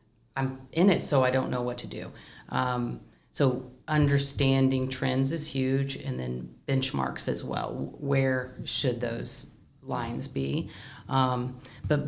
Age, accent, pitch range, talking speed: 30-49, American, 120-140 Hz, 140 wpm